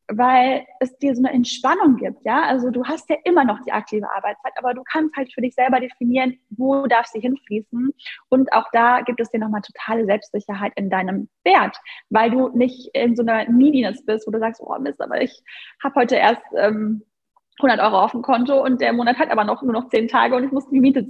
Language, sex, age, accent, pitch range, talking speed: German, female, 10-29, German, 230-270 Hz, 225 wpm